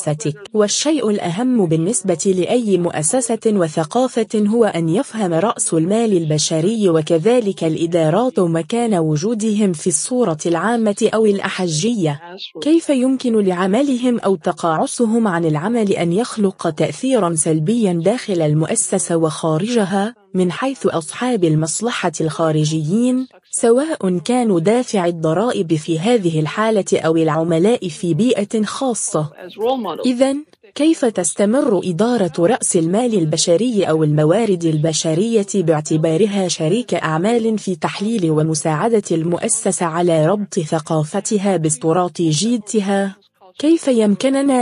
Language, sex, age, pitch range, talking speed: English, female, 20-39, 165-225 Hz, 100 wpm